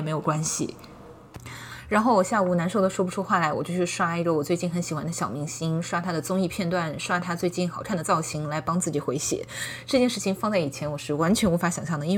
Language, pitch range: Chinese, 170-220 Hz